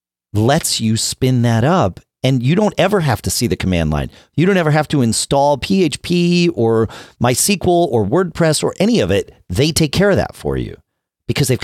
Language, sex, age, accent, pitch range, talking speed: English, male, 40-59, American, 105-155 Hz, 200 wpm